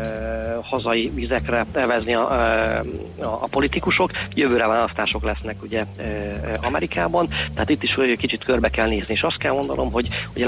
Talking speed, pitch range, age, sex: 160 wpm, 110-130 Hz, 40-59, male